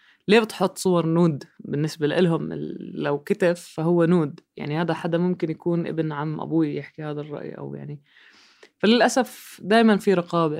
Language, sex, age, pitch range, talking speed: Arabic, female, 20-39, 145-170 Hz, 160 wpm